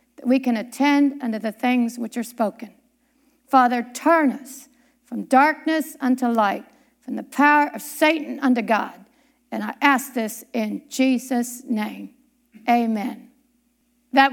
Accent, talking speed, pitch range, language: American, 135 wpm, 245-300 Hz, English